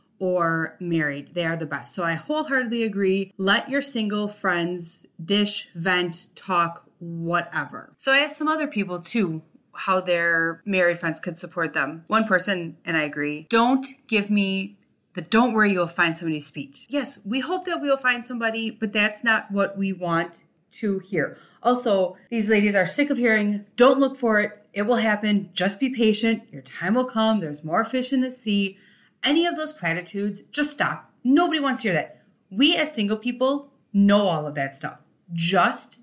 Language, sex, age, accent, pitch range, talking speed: English, female, 30-49, American, 175-245 Hz, 185 wpm